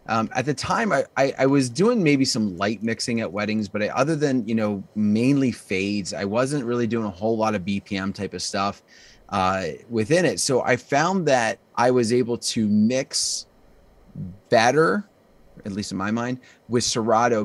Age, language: 30-49, English